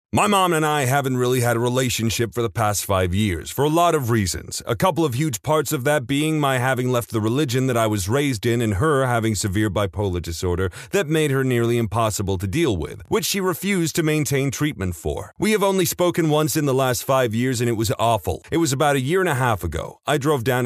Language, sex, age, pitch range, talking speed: English, male, 30-49, 105-145 Hz, 245 wpm